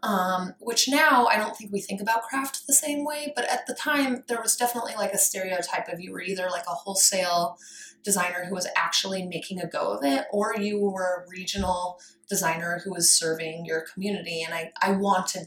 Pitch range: 180-225 Hz